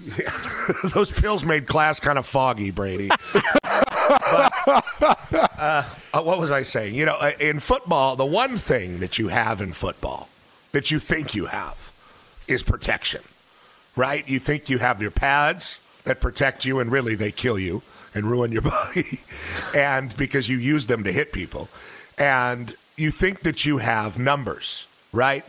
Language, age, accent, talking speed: English, 50-69, American, 160 wpm